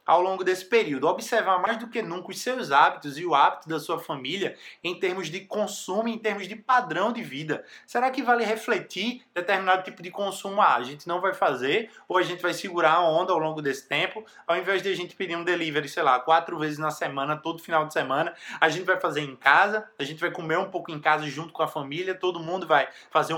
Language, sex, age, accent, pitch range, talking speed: Portuguese, male, 20-39, Brazilian, 155-215 Hz, 240 wpm